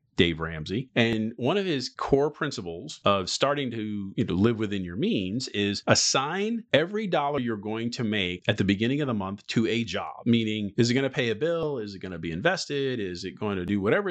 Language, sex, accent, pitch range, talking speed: English, male, American, 95-130 Hz, 230 wpm